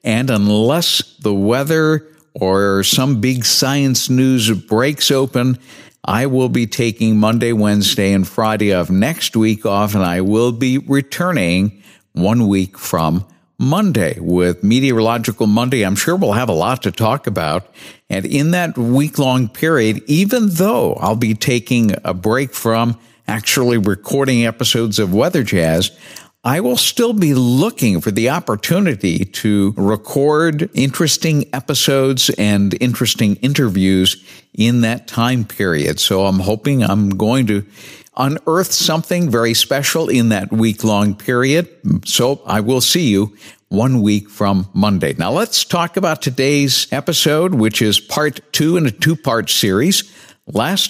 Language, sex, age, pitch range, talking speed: English, male, 50-69, 105-140 Hz, 140 wpm